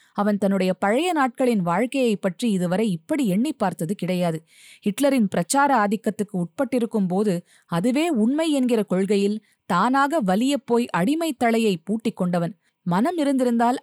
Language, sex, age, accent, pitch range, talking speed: Tamil, female, 20-39, native, 185-250 Hz, 120 wpm